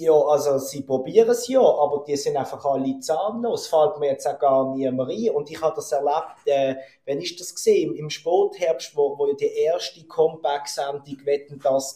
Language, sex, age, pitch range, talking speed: German, male, 30-49, 135-165 Hz, 210 wpm